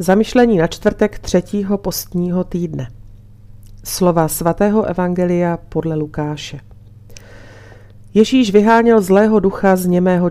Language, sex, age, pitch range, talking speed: Slovak, female, 40-59, 140-185 Hz, 100 wpm